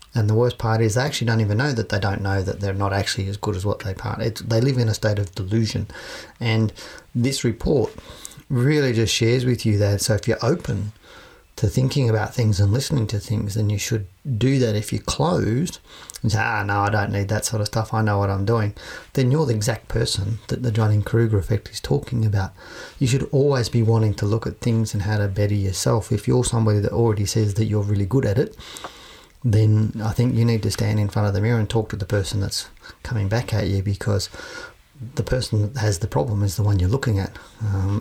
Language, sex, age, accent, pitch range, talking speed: English, male, 40-59, Australian, 105-120 Hz, 240 wpm